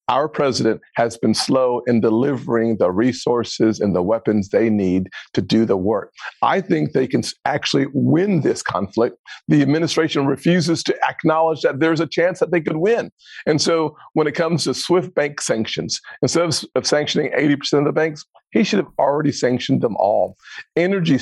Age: 50-69